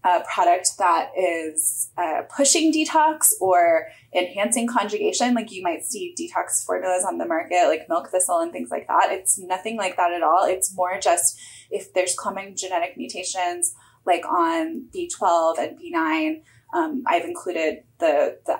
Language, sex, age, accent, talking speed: English, female, 20-39, American, 160 wpm